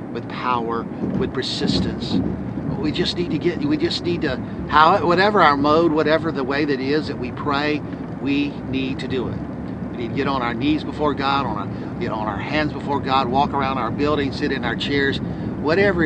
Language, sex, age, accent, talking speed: English, male, 50-69, American, 215 wpm